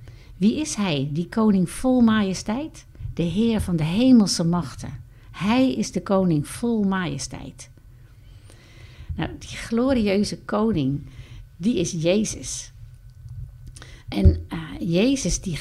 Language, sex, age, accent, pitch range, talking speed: Dutch, female, 60-79, Dutch, 125-200 Hz, 115 wpm